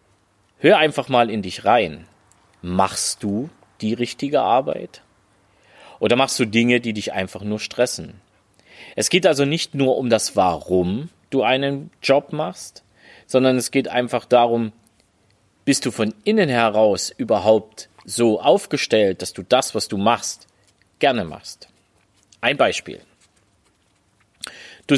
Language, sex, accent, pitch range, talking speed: German, male, German, 100-140 Hz, 135 wpm